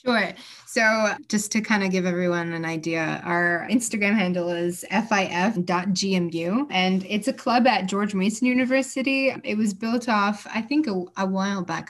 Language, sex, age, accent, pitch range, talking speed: English, female, 20-39, American, 180-210 Hz, 165 wpm